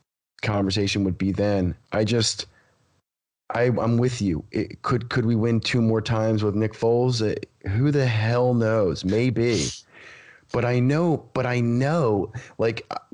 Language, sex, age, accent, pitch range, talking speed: English, male, 30-49, American, 105-130 Hz, 150 wpm